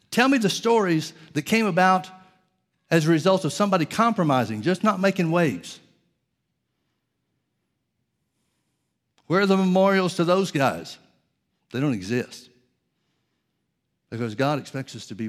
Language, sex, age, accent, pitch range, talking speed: English, male, 60-79, American, 150-185 Hz, 130 wpm